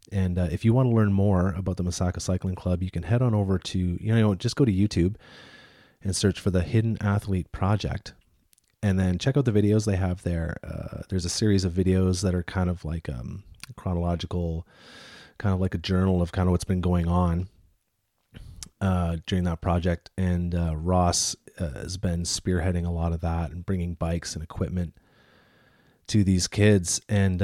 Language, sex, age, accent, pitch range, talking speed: English, male, 30-49, American, 90-105 Hz, 195 wpm